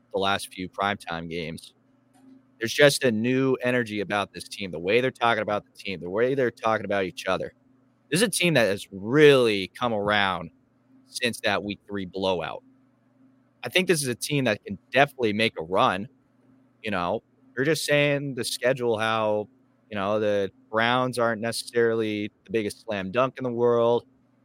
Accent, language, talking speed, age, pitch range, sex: American, English, 180 wpm, 30-49, 105-130 Hz, male